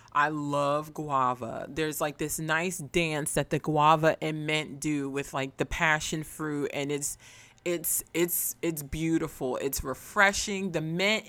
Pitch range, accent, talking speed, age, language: 140-175 Hz, American, 155 wpm, 30-49, English